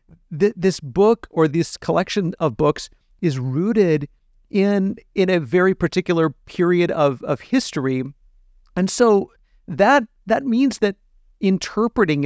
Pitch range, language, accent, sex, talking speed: 150-195 Hz, English, American, male, 120 wpm